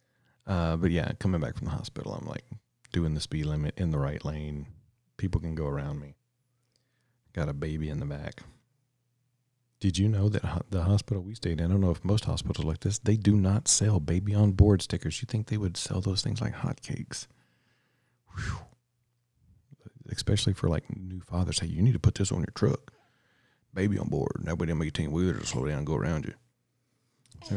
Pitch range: 95-125 Hz